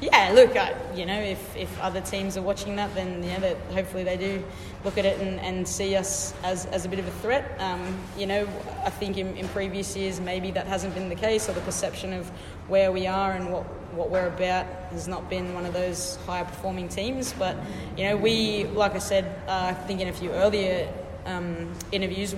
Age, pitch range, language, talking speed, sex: 20-39, 180-195 Hz, English, 225 wpm, female